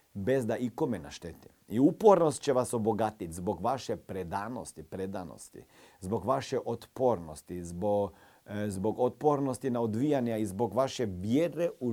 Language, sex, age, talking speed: Croatian, male, 40-59, 130 wpm